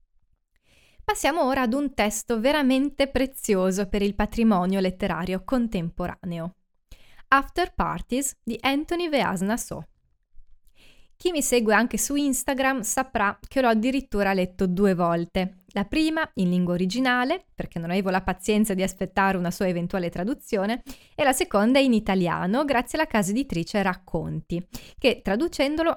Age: 20-39